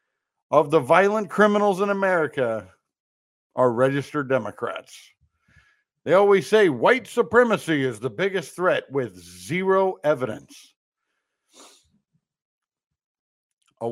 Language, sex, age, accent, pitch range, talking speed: English, male, 60-79, American, 150-220 Hz, 95 wpm